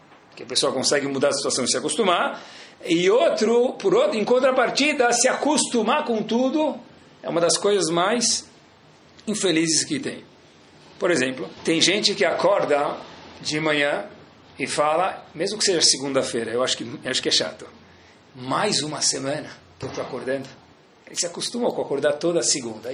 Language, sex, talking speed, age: Portuguese, male, 160 wpm, 40-59